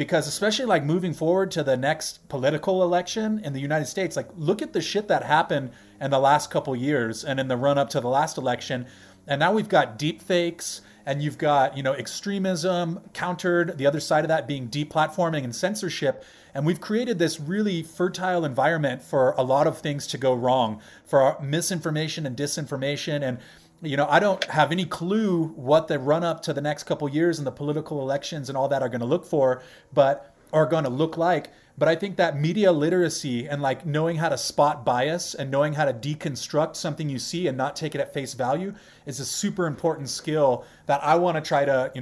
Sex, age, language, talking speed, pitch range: male, 30-49, English, 220 wpm, 140-175 Hz